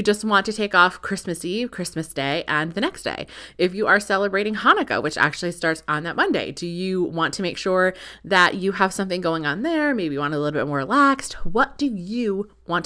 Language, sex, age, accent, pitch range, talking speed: English, female, 20-39, American, 180-265 Hz, 230 wpm